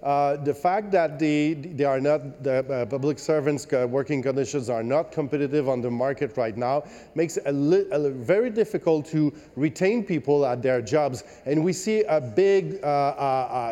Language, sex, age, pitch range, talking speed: English, male, 40-59, 135-165 Hz, 160 wpm